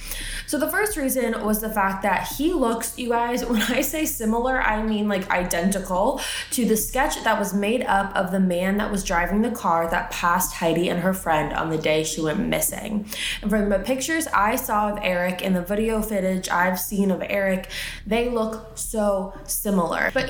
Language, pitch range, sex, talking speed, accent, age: English, 180-230 Hz, female, 200 wpm, American, 20-39